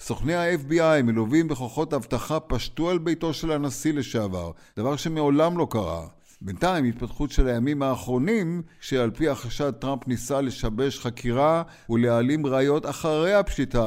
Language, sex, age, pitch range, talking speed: Hebrew, male, 50-69, 120-155 Hz, 135 wpm